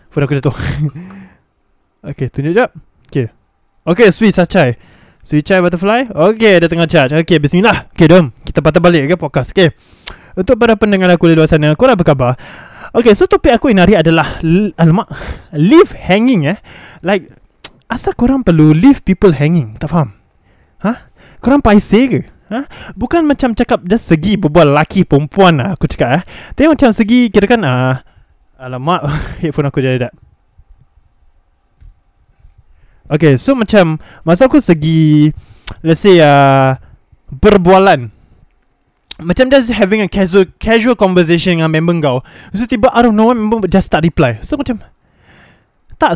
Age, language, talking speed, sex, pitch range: 20-39, Malay, 150 wpm, male, 150-230 Hz